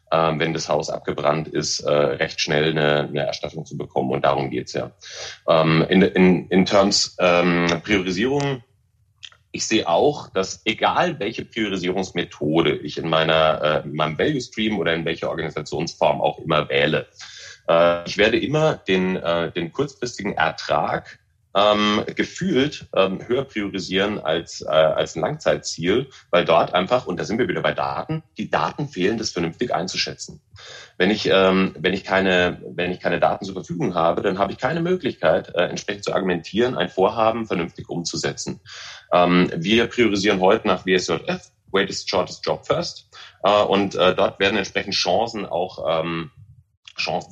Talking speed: 160 wpm